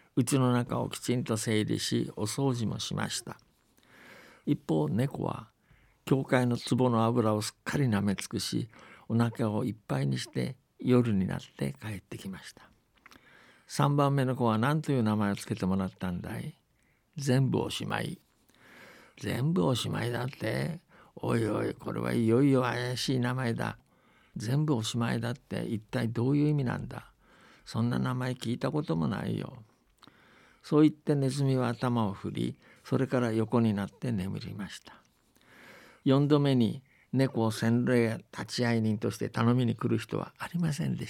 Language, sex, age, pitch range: Japanese, male, 60-79, 110-130 Hz